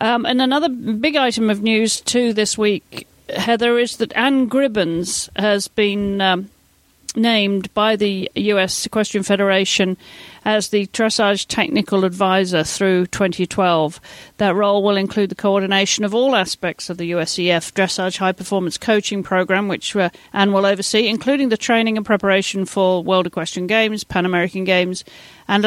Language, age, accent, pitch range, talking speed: English, 40-59, British, 185-215 Hz, 150 wpm